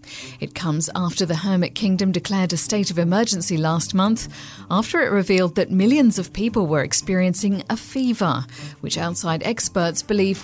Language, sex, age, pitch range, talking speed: English, female, 40-59, 160-210 Hz, 160 wpm